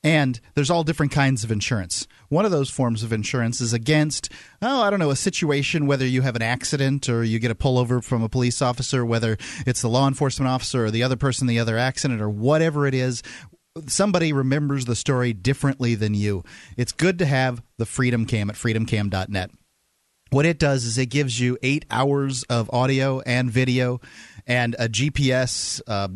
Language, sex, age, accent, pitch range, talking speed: English, male, 30-49, American, 115-140 Hz, 195 wpm